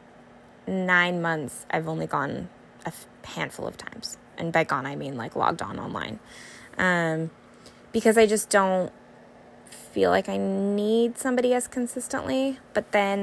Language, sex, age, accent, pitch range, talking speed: English, female, 20-39, American, 165-220 Hz, 145 wpm